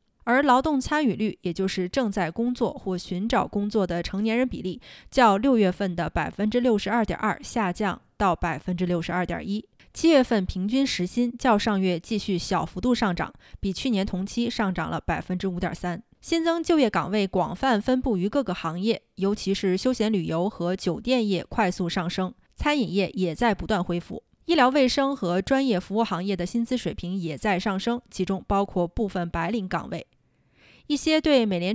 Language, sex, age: Chinese, female, 20-39